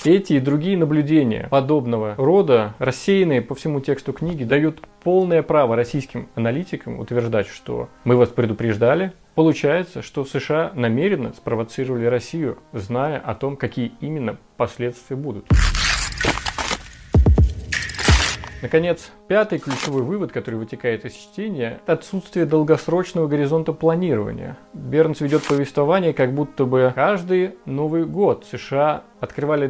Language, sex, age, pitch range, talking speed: Russian, male, 30-49, 125-160 Hz, 115 wpm